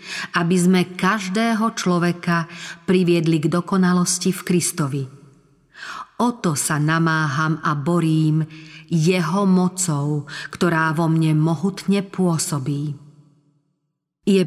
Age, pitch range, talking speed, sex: 40-59, 155-190 Hz, 90 wpm, female